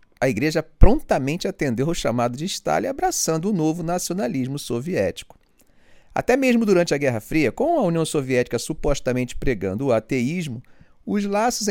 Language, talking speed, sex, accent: Portuguese, 150 wpm, male, Brazilian